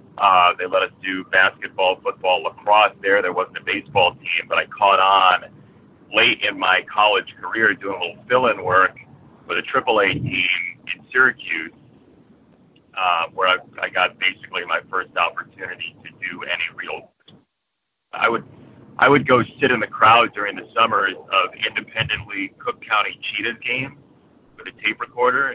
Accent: American